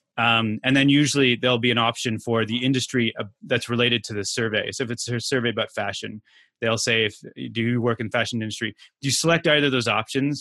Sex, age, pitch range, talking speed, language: male, 20-39, 115-140 Hz, 230 wpm, English